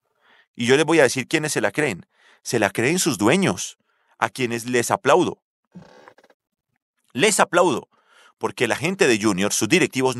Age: 40-59